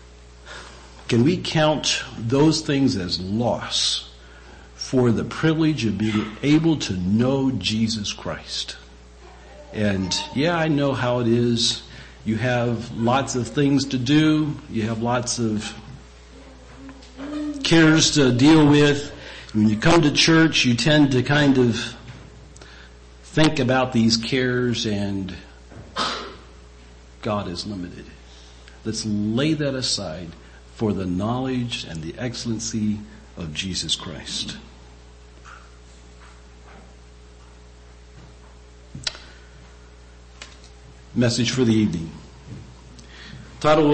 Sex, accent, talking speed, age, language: male, American, 100 wpm, 50-69, English